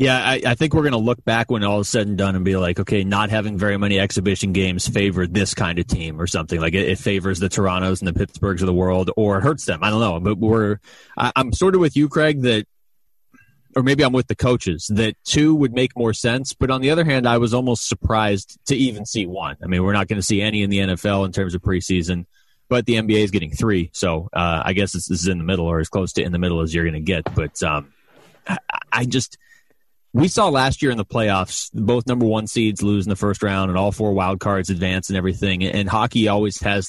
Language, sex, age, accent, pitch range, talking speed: English, male, 30-49, American, 95-115 Hz, 260 wpm